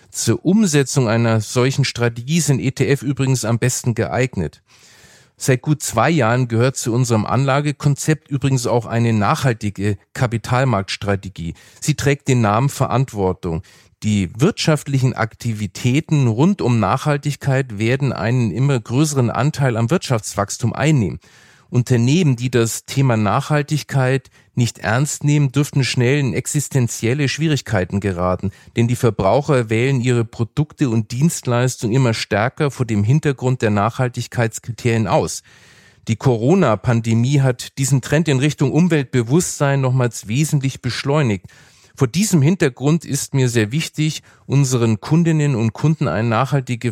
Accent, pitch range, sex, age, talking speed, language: German, 115-145 Hz, male, 40-59, 125 wpm, German